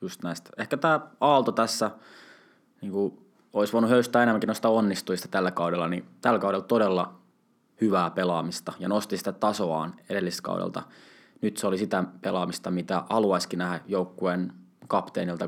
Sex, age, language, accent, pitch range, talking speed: male, 20-39, Finnish, native, 90-110 Hz, 140 wpm